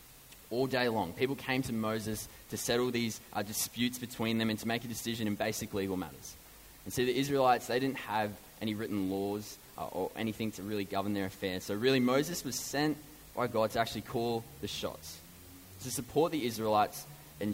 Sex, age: male, 20-39